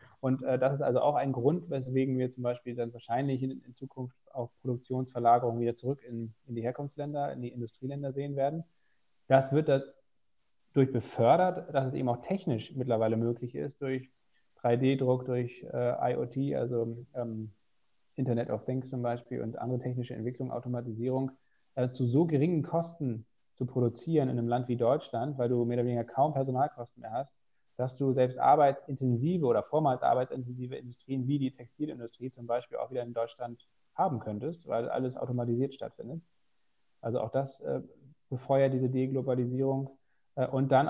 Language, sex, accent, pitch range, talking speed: German, male, German, 120-140 Hz, 165 wpm